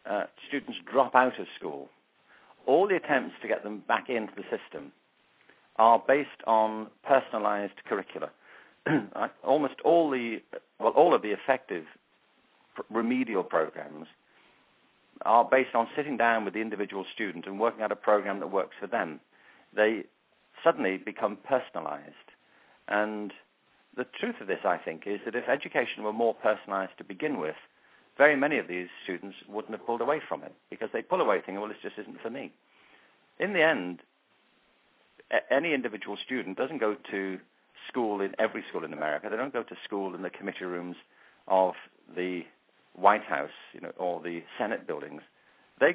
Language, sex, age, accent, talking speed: English, male, 50-69, British, 160 wpm